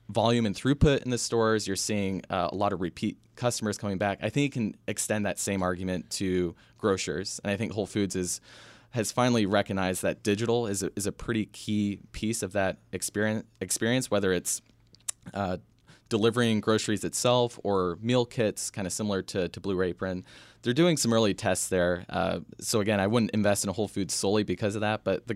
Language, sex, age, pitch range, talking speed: English, male, 20-39, 95-115 Hz, 200 wpm